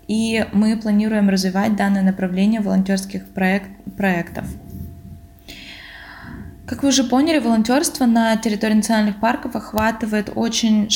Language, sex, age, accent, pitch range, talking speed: Russian, female, 20-39, native, 200-240 Hz, 110 wpm